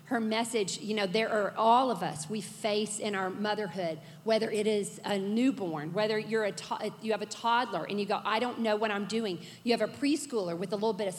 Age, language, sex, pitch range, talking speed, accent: 40-59, English, female, 205-255 Hz, 240 wpm, American